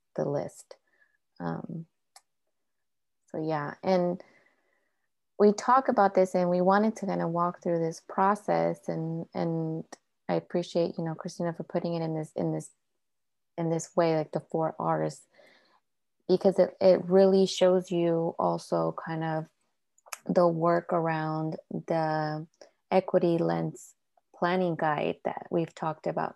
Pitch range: 160-185 Hz